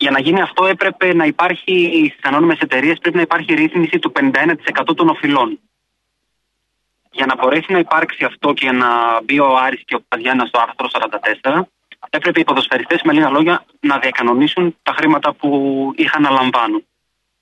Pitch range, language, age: 140-195 Hz, Greek, 20-39